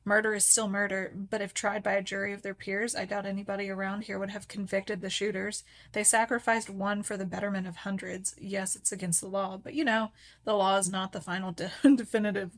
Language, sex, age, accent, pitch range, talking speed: English, female, 20-39, American, 190-220 Hz, 225 wpm